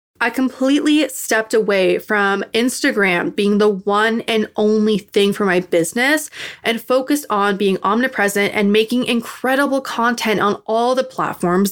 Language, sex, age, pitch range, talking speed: English, female, 20-39, 200-250 Hz, 145 wpm